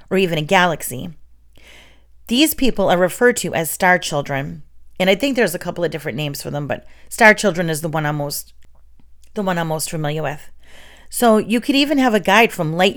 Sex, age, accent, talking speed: female, 40-59, American, 215 wpm